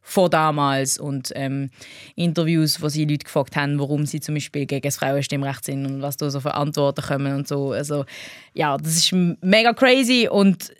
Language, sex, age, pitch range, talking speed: German, female, 20-39, 145-180 Hz, 190 wpm